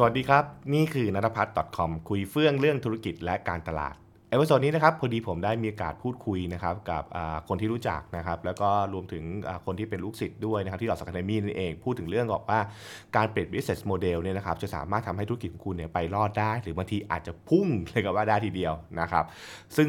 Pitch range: 90-115 Hz